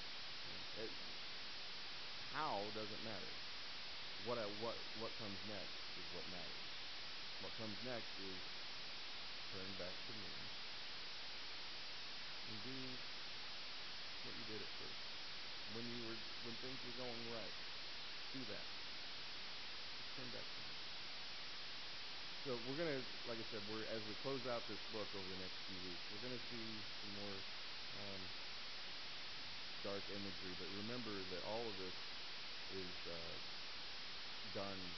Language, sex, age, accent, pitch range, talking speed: English, male, 50-69, American, 95-110 Hz, 130 wpm